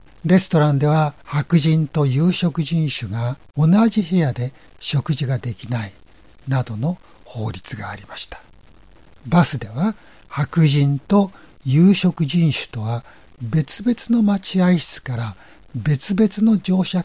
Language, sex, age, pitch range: Japanese, male, 60-79, 120-170 Hz